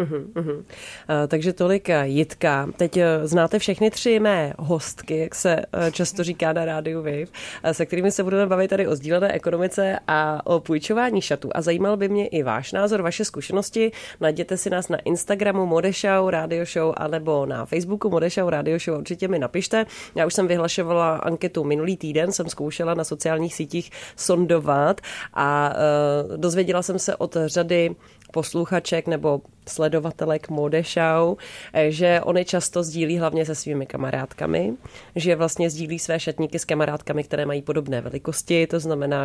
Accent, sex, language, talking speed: native, female, Czech, 160 wpm